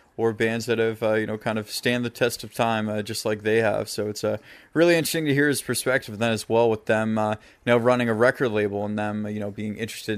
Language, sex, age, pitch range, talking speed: English, male, 20-39, 110-135 Hz, 270 wpm